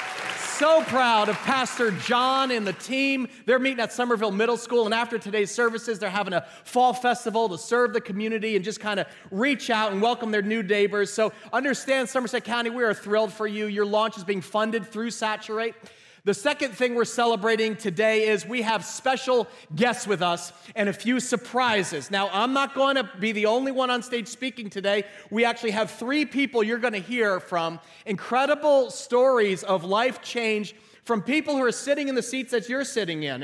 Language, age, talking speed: English, 30-49, 200 wpm